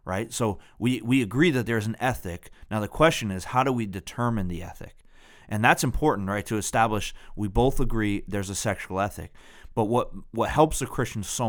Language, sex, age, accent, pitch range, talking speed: English, male, 30-49, American, 95-115 Hz, 205 wpm